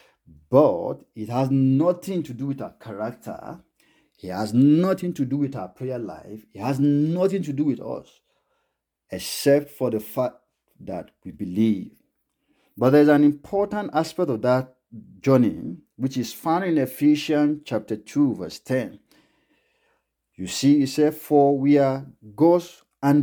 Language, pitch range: English, 110-145 Hz